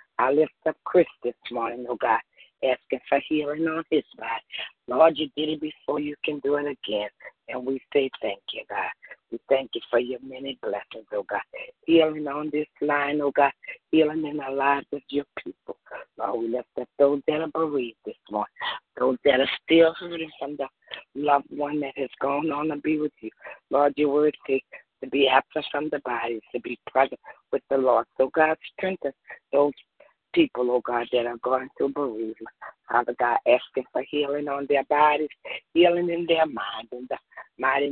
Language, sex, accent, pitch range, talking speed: English, female, American, 125-150 Hz, 195 wpm